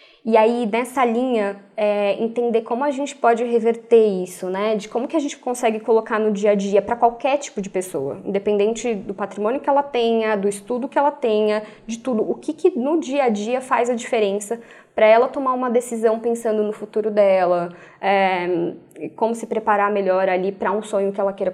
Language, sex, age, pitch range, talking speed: Portuguese, female, 20-39, 200-250 Hz, 205 wpm